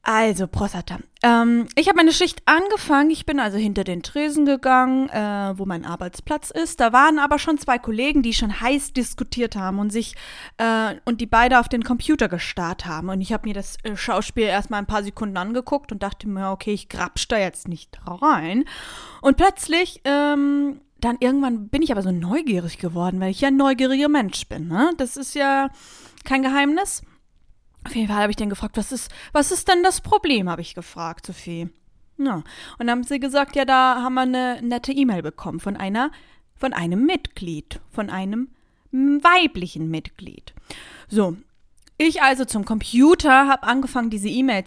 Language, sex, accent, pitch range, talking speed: German, female, German, 200-280 Hz, 185 wpm